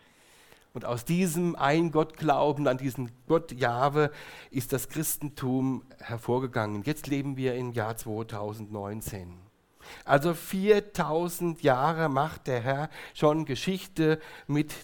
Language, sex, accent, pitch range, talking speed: German, male, German, 115-155 Hz, 105 wpm